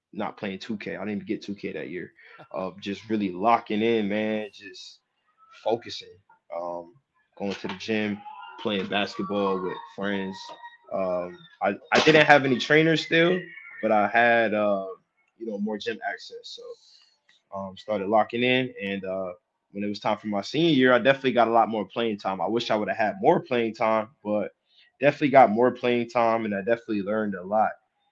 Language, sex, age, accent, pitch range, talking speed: English, male, 20-39, American, 100-125 Hz, 190 wpm